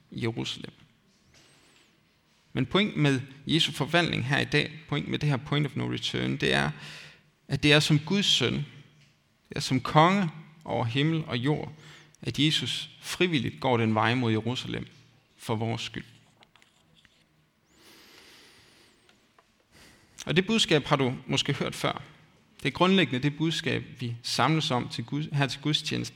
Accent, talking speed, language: native, 150 wpm, Danish